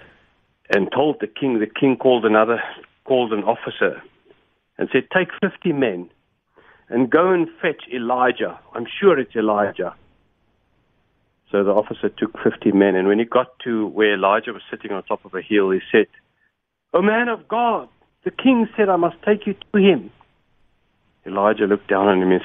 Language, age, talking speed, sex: English, 60-79, 180 wpm, male